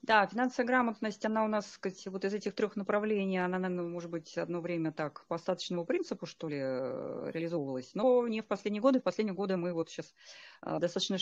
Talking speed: 200 wpm